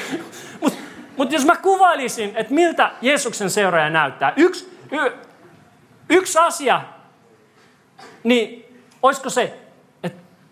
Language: Finnish